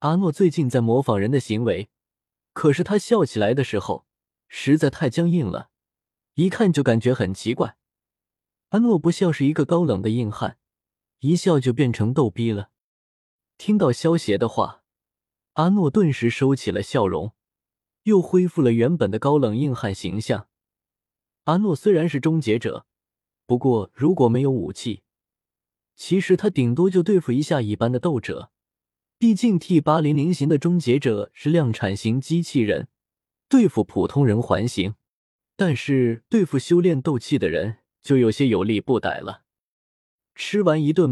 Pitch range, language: 120-175 Hz, Chinese